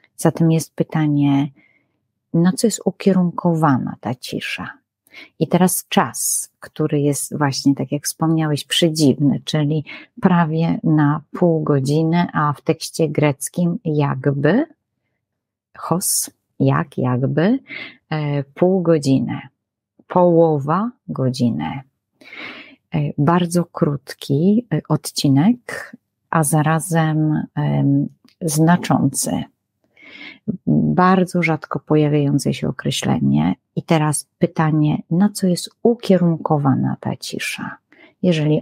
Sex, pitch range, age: female, 145-175 Hz, 40-59